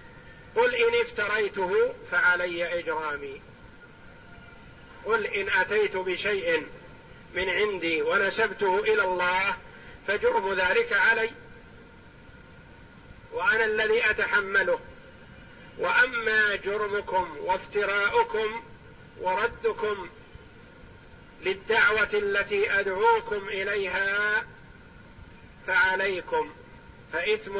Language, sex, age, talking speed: Arabic, male, 50-69, 65 wpm